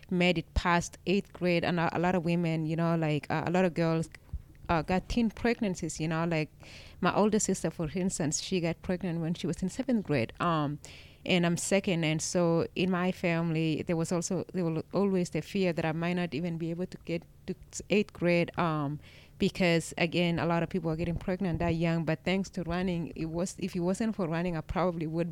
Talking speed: 225 wpm